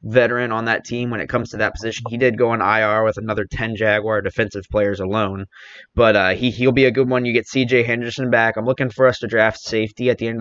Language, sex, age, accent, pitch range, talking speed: English, male, 20-39, American, 105-120 Hz, 260 wpm